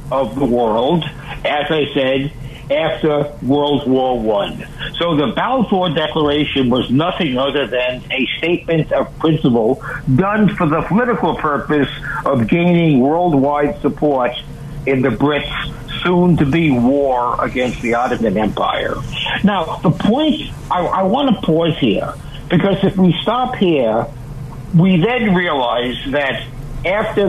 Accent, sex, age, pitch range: American, male, 60-79, 140-175 Hz